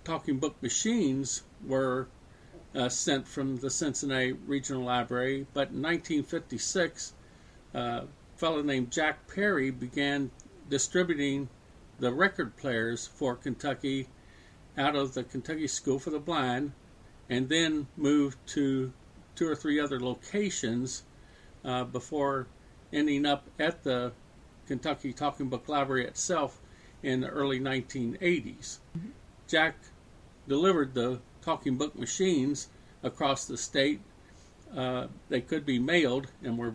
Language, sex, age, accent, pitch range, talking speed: English, male, 50-69, American, 125-145 Hz, 120 wpm